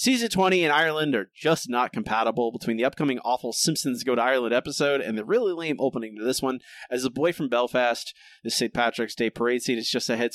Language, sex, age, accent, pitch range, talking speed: English, male, 30-49, American, 125-185 Hz, 230 wpm